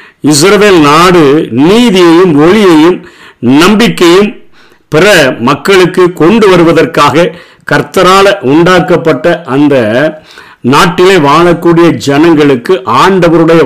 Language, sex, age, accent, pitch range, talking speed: Tamil, male, 50-69, native, 150-185 Hz, 70 wpm